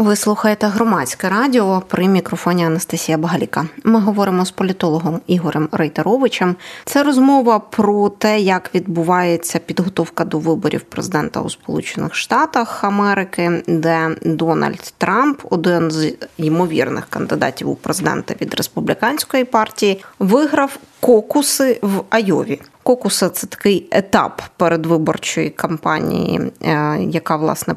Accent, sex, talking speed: native, female, 115 wpm